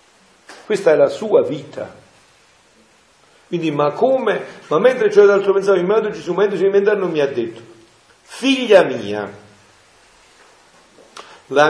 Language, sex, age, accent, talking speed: Italian, male, 50-69, native, 125 wpm